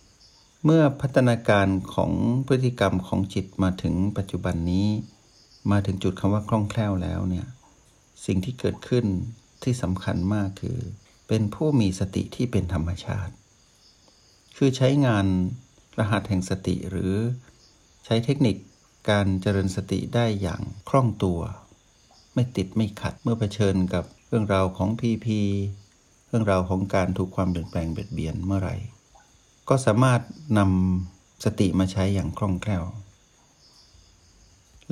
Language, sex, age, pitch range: Thai, male, 60-79, 95-115 Hz